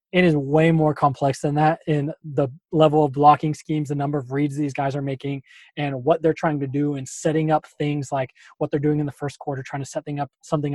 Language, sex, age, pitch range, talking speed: English, male, 20-39, 140-160 Hz, 250 wpm